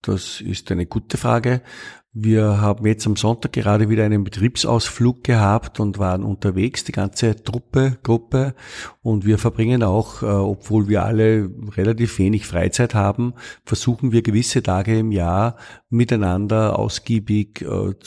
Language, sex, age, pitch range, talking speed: German, male, 50-69, 105-120 Hz, 145 wpm